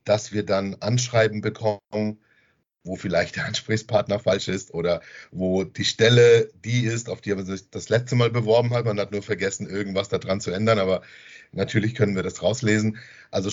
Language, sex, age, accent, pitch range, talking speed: German, male, 50-69, German, 105-120 Hz, 180 wpm